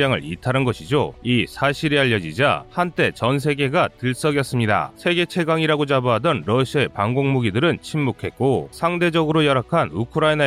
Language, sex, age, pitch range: Korean, male, 30-49, 120-160 Hz